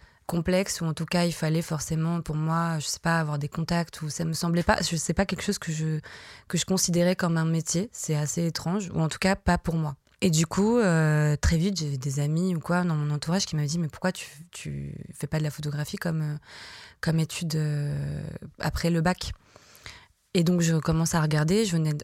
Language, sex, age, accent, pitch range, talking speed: French, female, 20-39, French, 155-180 Hz, 240 wpm